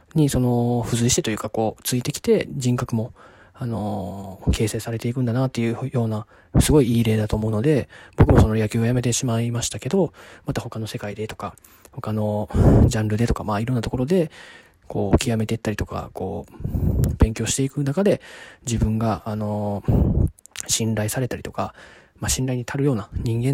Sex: male